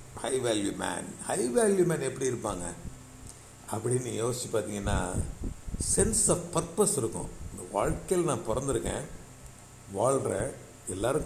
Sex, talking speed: male, 110 wpm